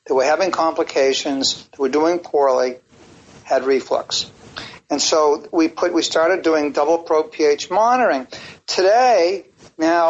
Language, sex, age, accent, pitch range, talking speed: English, male, 50-69, American, 160-225 Hz, 135 wpm